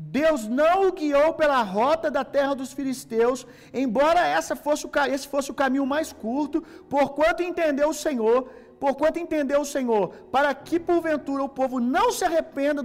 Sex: male